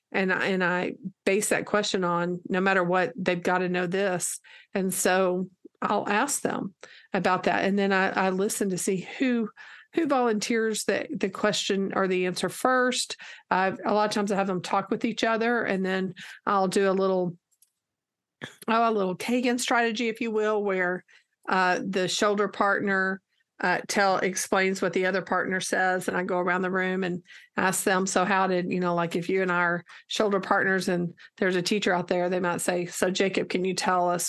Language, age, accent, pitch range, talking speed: English, 50-69, American, 180-210 Hz, 200 wpm